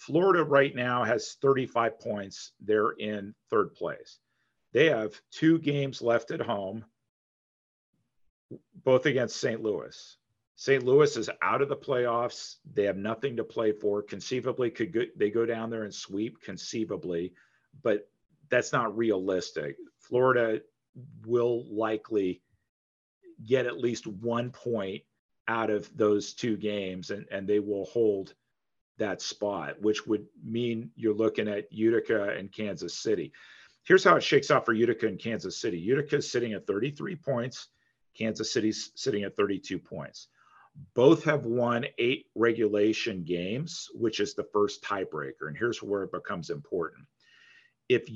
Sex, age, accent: male, 50-69, American